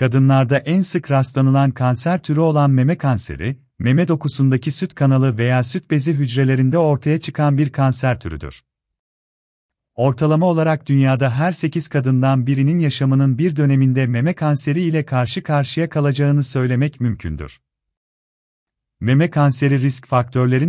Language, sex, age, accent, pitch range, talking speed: Turkish, male, 40-59, native, 115-150 Hz, 130 wpm